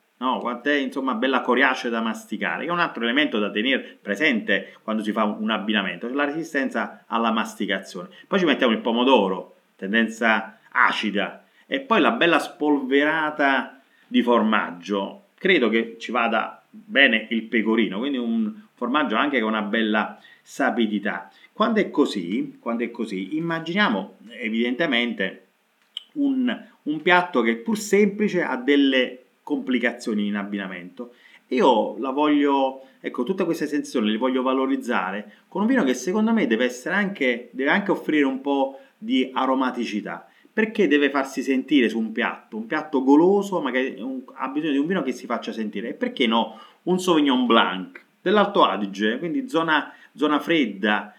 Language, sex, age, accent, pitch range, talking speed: Italian, male, 30-49, native, 115-190 Hz, 155 wpm